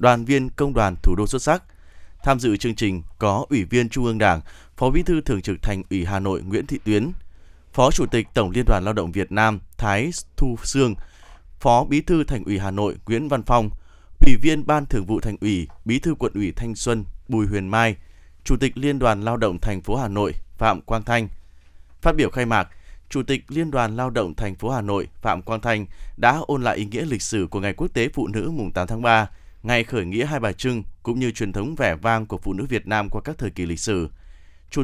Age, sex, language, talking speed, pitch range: 20-39, male, Vietnamese, 240 wpm, 95-125 Hz